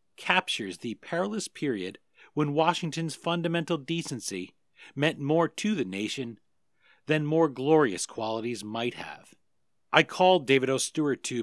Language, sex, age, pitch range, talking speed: English, male, 40-59, 120-160 Hz, 130 wpm